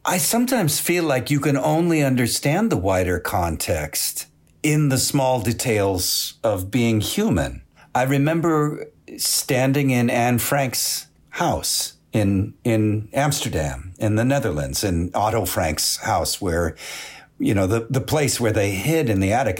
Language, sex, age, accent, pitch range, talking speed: English, male, 50-69, American, 95-135 Hz, 145 wpm